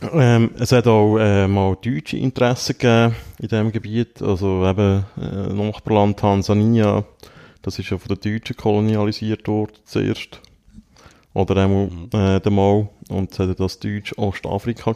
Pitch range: 95-110 Hz